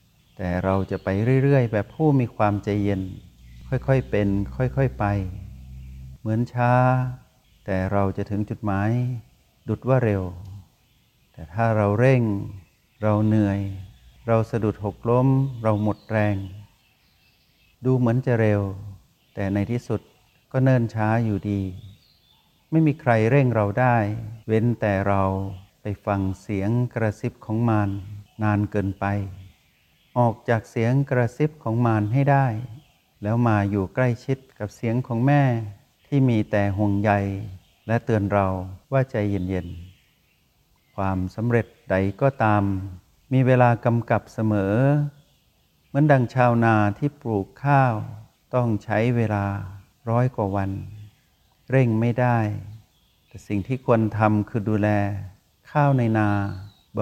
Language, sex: Thai, male